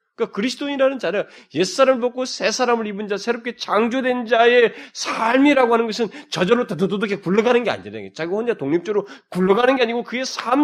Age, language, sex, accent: 40-59, Korean, male, native